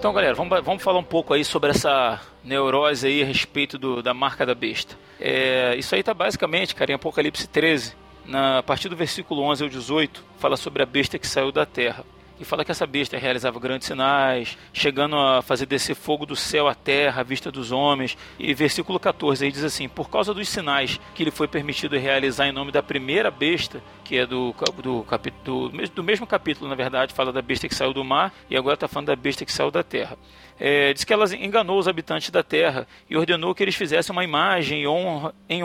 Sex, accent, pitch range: male, Brazilian, 135-180 Hz